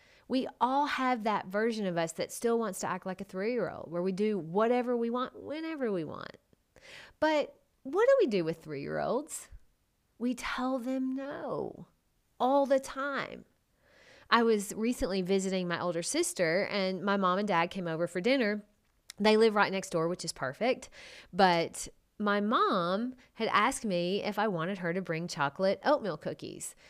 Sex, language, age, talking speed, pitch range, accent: female, English, 30-49, 170 wpm, 180-250 Hz, American